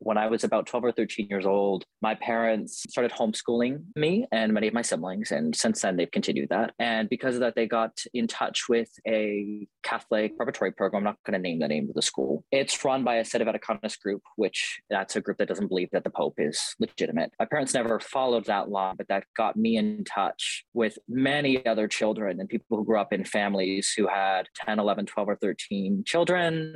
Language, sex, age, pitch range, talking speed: English, male, 20-39, 105-135 Hz, 220 wpm